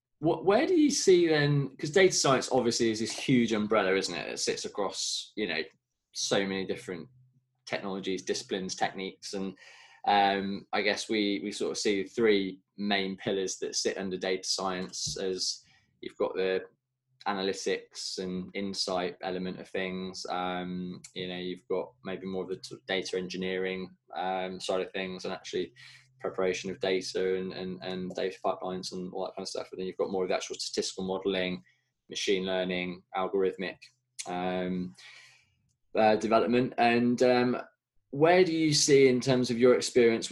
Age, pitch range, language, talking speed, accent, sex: 20-39, 95-115 Hz, English, 165 wpm, British, male